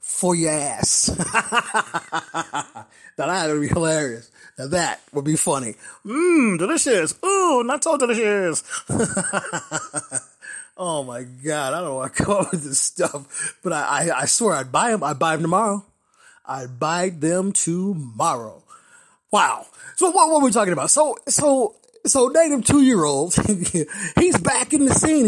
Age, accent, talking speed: 30-49, American, 150 wpm